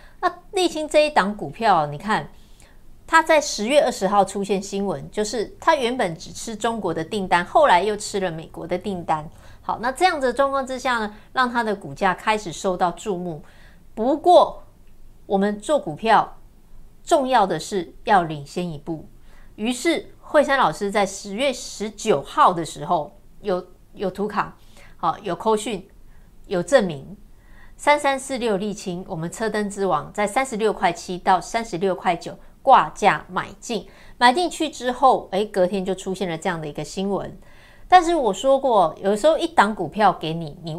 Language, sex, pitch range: Chinese, female, 185-270 Hz